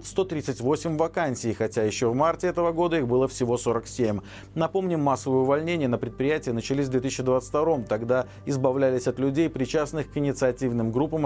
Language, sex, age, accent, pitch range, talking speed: Russian, male, 40-59, native, 115-160 Hz, 155 wpm